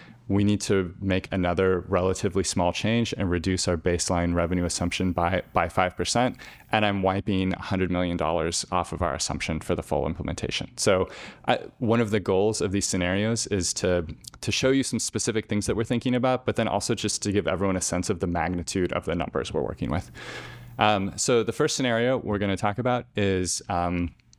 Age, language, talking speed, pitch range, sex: 20-39, English, 200 wpm, 90-110 Hz, male